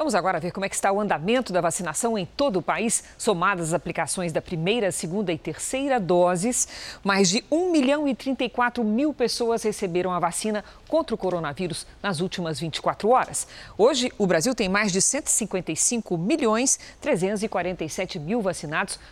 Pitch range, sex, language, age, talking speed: 170-230 Hz, female, Portuguese, 40-59, 165 wpm